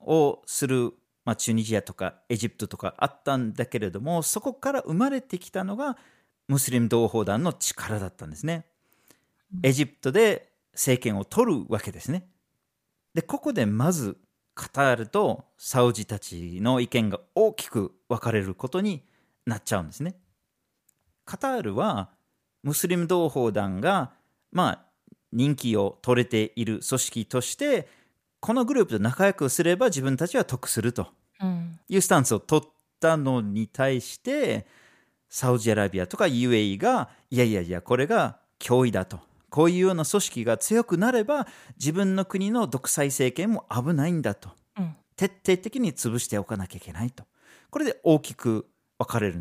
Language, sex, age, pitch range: Japanese, male, 40-59, 110-180 Hz